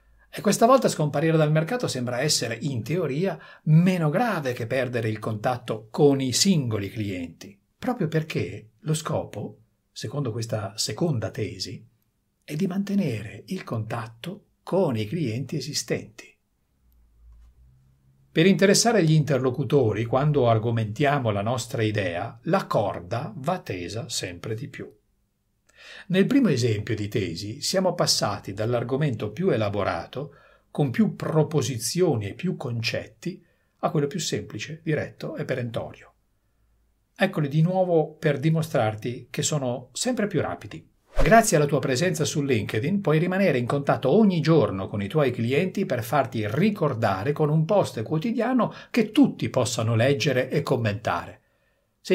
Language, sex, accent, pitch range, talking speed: Italian, male, native, 115-165 Hz, 135 wpm